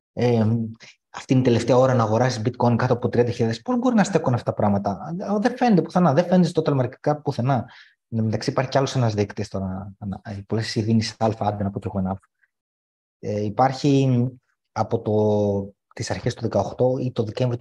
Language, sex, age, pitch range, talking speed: Greek, male, 20-39, 110-140 Hz, 175 wpm